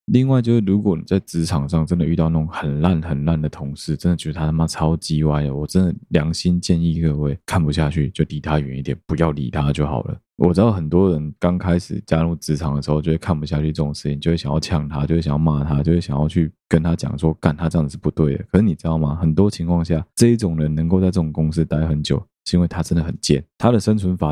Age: 20-39